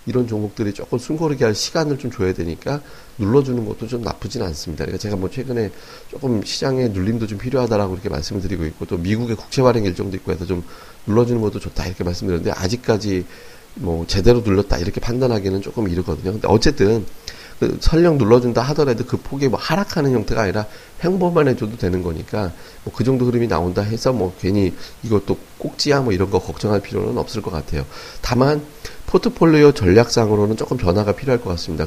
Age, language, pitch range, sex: 40-59, Korean, 90-125 Hz, male